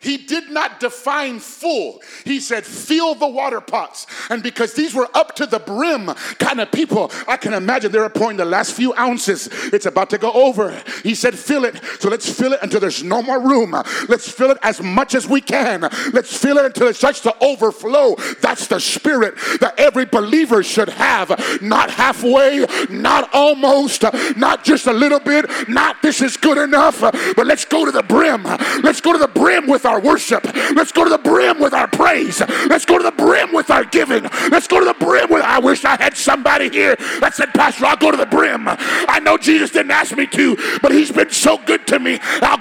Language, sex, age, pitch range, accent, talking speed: English, male, 40-59, 240-305 Hz, American, 215 wpm